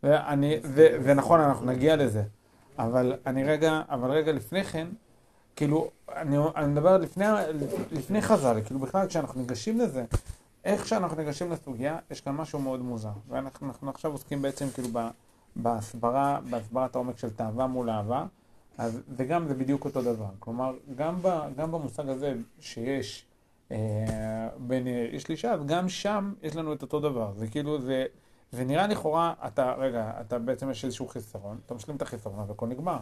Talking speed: 155 wpm